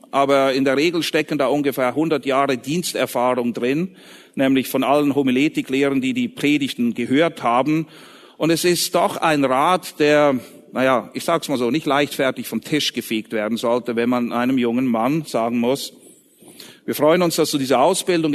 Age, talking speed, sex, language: 40-59, 175 wpm, male, German